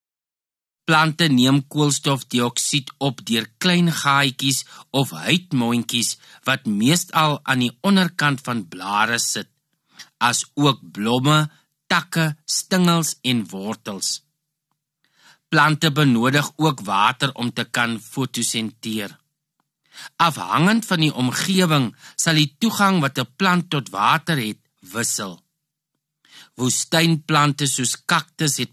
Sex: male